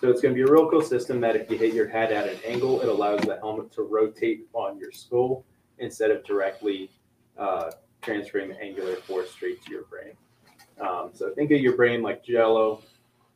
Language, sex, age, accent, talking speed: English, male, 20-39, American, 205 wpm